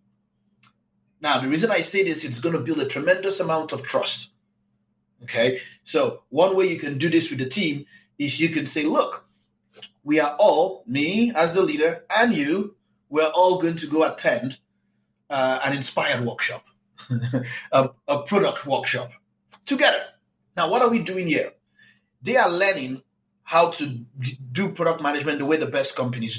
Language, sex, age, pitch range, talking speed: English, male, 30-49, 150-205 Hz, 170 wpm